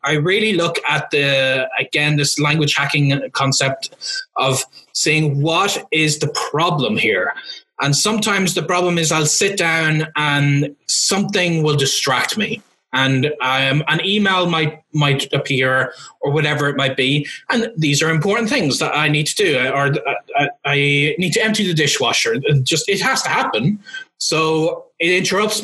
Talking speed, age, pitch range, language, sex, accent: 165 wpm, 20-39, 140-185 Hz, English, male, Irish